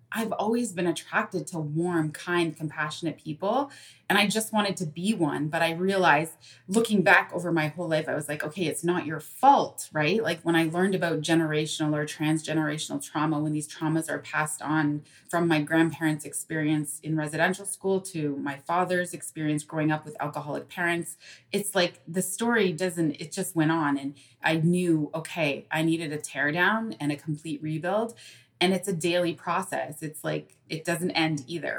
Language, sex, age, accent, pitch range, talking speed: English, female, 30-49, American, 150-175 Hz, 185 wpm